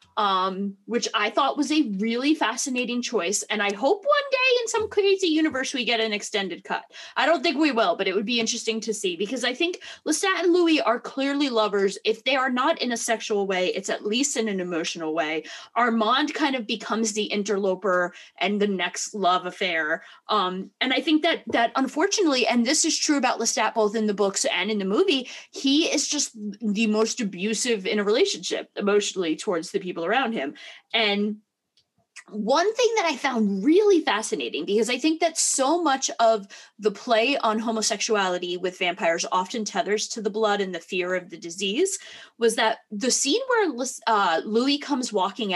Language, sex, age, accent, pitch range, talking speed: English, female, 20-39, American, 205-290 Hz, 195 wpm